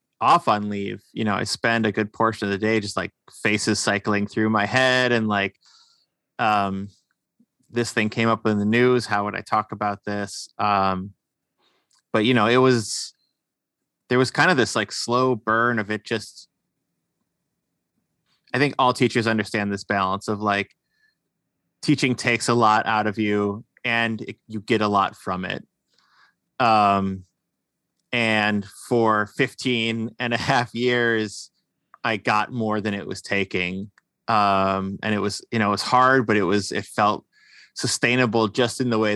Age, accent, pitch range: 20-39, American, 100-115 Hz